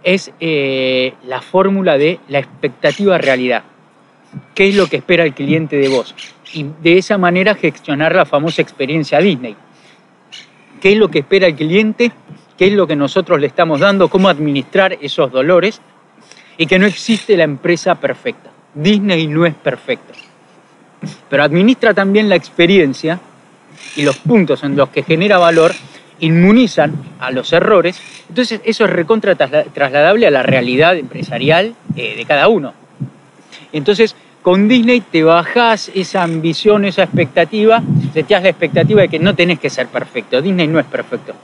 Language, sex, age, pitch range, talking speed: Spanish, male, 40-59, 150-195 Hz, 160 wpm